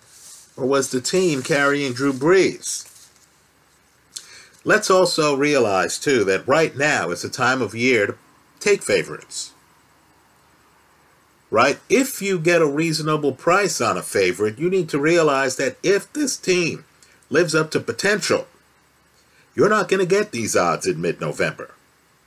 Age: 50-69